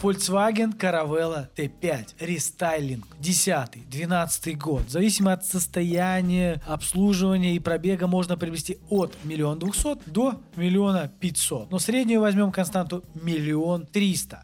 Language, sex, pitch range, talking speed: Russian, male, 160-210 Hz, 115 wpm